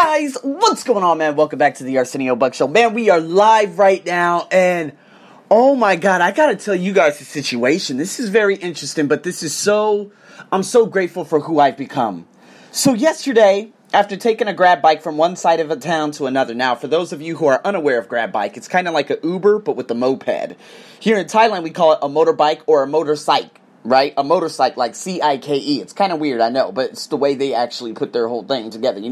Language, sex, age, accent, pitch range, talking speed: English, male, 30-49, American, 150-225 Hz, 235 wpm